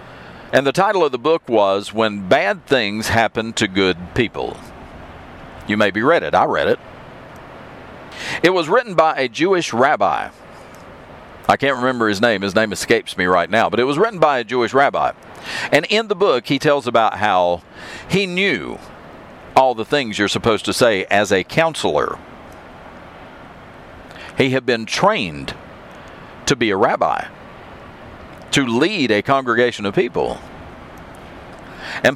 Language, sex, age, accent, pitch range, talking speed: English, male, 50-69, American, 100-135 Hz, 155 wpm